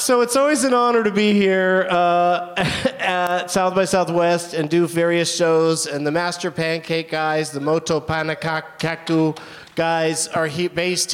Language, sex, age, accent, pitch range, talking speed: English, male, 30-49, American, 160-215 Hz, 150 wpm